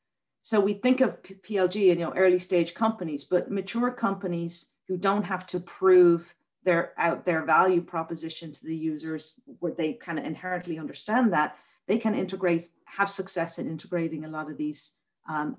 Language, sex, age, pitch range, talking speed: English, female, 40-59, 155-185 Hz, 175 wpm